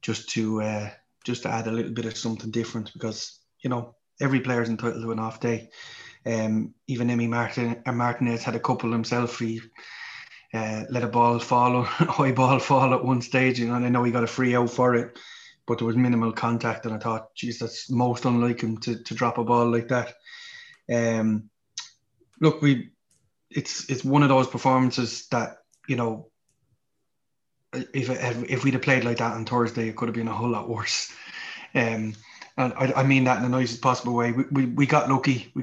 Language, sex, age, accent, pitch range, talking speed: English, male, 20-39, Irish, 115-125 Hz, 205 wpm